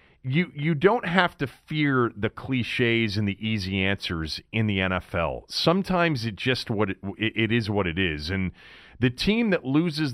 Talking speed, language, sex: 180 wpm, English, male